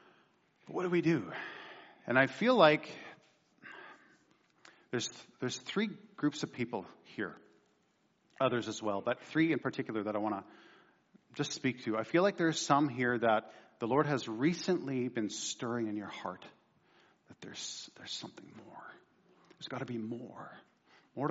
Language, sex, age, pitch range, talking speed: English, male, 40-59, 115-145 Hz, 160 wpm